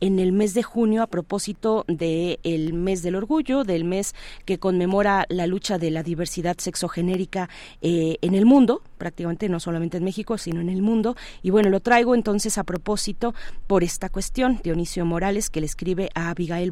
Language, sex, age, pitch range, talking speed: Spanish, female, 30-49, 170-210 Hz, 185 wpm